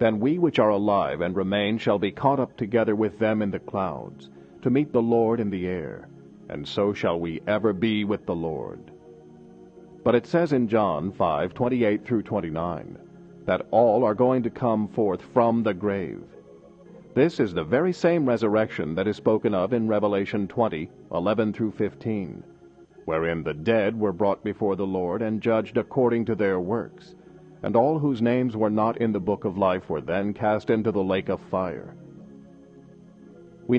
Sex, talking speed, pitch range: male, 175 wpm, 95-120 Hz